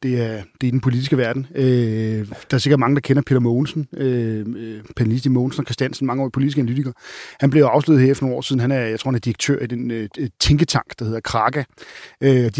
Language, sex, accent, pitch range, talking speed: Danish, male, native, 125-150 Hz, 235 wpm